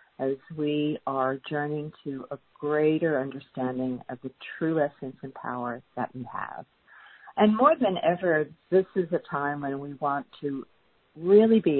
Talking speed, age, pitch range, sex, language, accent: 160 wpm, 50-69, 135-170 Hz, female, English, American